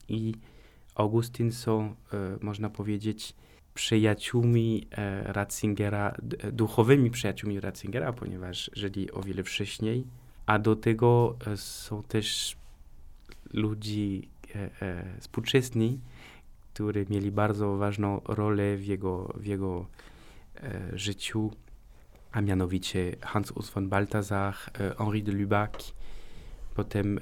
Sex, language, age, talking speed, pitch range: male, Polish, 20-39, 105 wpm, 100-110 Hz